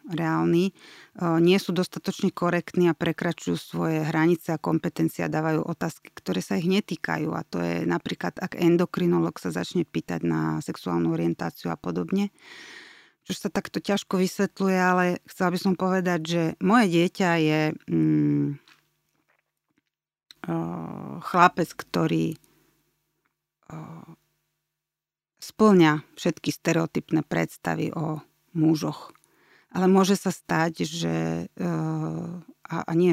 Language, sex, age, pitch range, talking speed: Slovak, female, 30-49, 155-180 Hz, 115 wpm